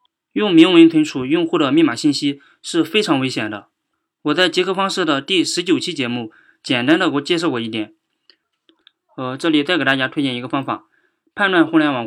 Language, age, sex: Chinese, 20-39, male